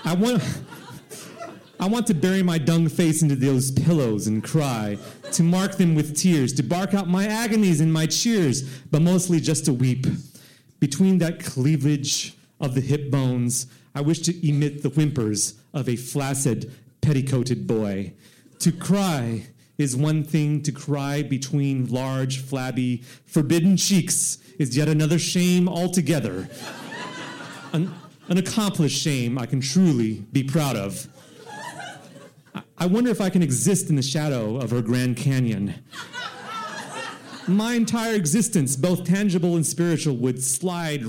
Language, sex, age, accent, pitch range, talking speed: English, male, 30-49, American, 130-175 Hz, 145 wpm